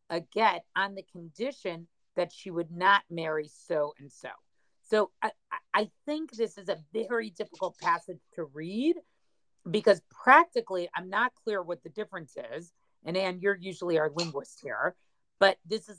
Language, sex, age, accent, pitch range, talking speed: English, female, 40-59, American, 170-210 Hz, 160 wpm